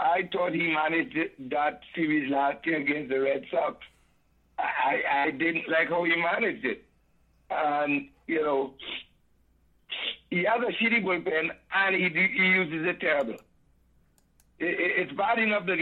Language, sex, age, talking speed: English, male, 60-79, 155 wpm